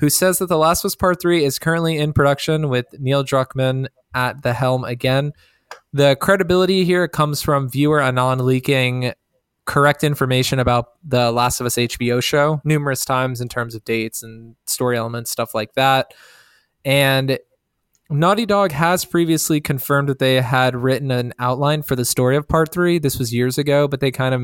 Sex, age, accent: male, 20-39, American